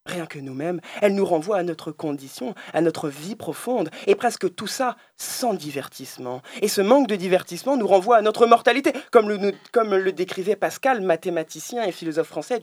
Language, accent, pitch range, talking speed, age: French, French, 160-230 Hz, 185 wpm, 20-39